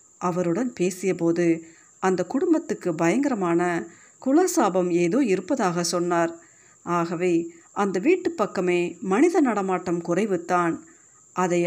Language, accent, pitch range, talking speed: Tamil, native, 175-235 Hz, 85 wpm